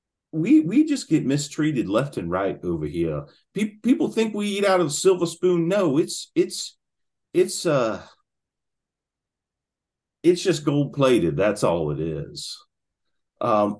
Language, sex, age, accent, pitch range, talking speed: English, male, 40-59, American, 145-215 Hz, 145 wpm